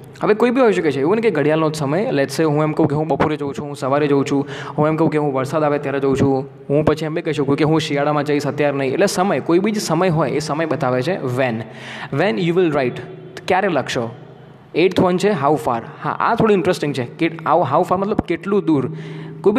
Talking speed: 170 wpm